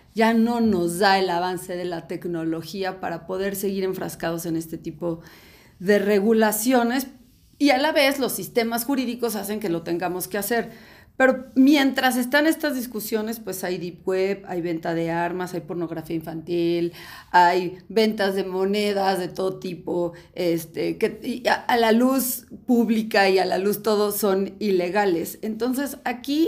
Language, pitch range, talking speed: Spanish, 190-245 Hz, 155 wpm